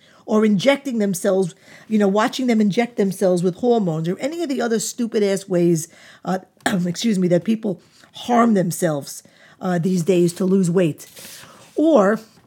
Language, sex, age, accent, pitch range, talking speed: English, female, 50-69, American, 180-230 Hz, 160 wpm